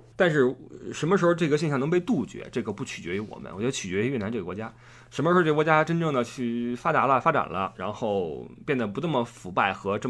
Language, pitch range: Chinese, 120-160 Hz